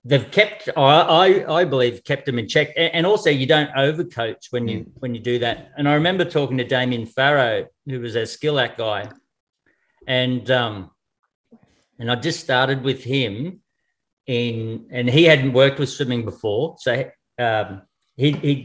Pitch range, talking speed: 120-145 Hz, 170 wpm